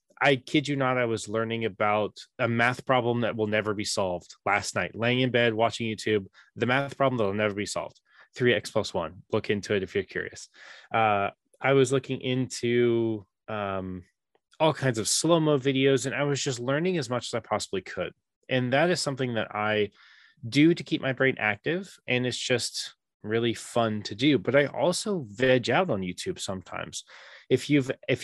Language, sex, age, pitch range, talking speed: English, male, 20-39, 105-130 Hz, 195 wpm